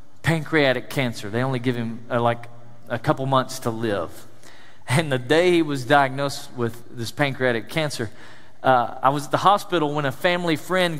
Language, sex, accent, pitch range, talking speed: English, male, American, 130-200 Hz, 180 wpm